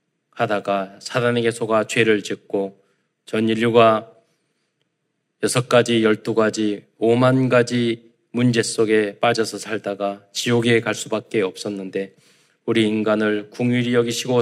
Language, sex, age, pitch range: Korean, male, 20-39, 110-125 Hz